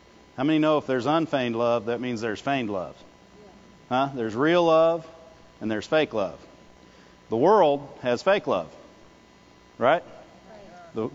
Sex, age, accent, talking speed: male, 40-59, American, 145 wpm